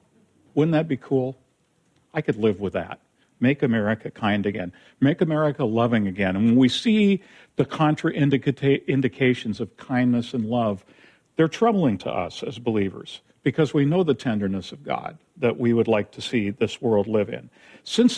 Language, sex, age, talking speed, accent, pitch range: English, male, 50-69, 170 wpm, American, 115-140 Hz